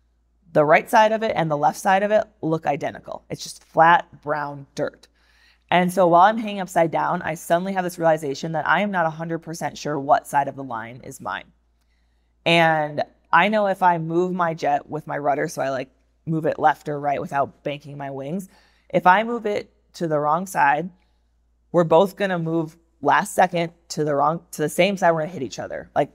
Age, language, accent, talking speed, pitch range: 20-39, English, American, 215 wpm, 140-175 Hz